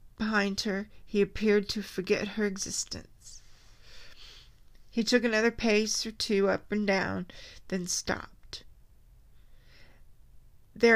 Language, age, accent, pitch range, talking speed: English, 40-59, American, 180-220 Hz, 110 wpm